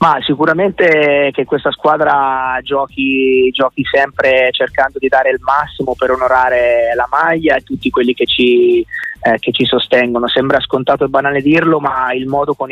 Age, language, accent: 20-39, Italian, native